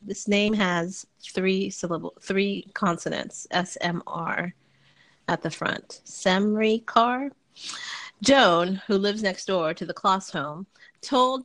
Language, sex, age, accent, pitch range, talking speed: English, female, 30-49, American, 175-215 Hz, 130 wpm